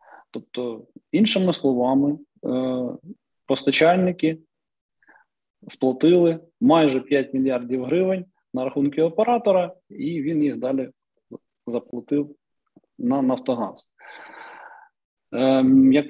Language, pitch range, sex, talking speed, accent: Ukrainian, 130-165 Hz, male, 75 wpm, native